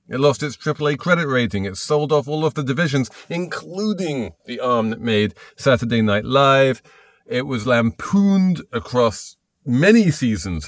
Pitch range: 110-150 Hz